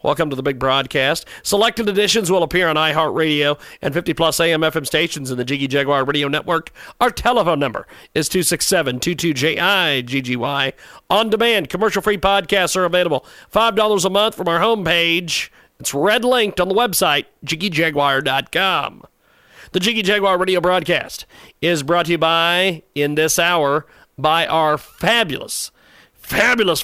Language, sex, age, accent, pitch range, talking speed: English, male, 40-59, American, 150-190 Hz, 150 wpm